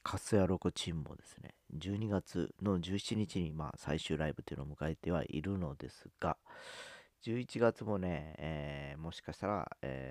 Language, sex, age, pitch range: Japanese, male, 40-59, 75-110 Hz